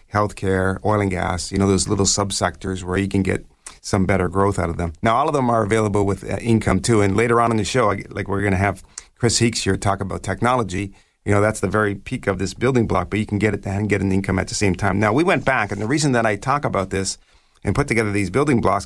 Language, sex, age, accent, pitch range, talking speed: English, male, 40-59, American, 95-115 Hz, 285 wpm